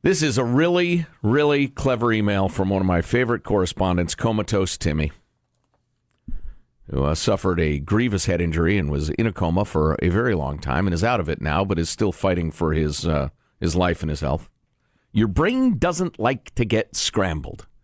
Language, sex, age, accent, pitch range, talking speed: English, male, 50-69, American, 90-140 Hz, 190 wpm